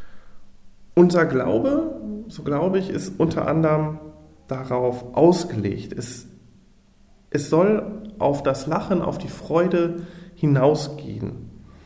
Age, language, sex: 40-59, German, male